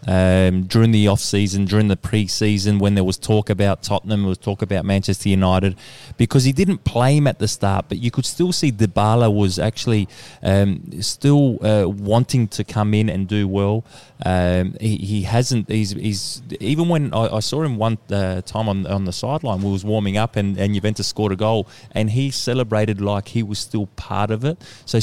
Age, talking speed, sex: 20-39, 205 wpm, male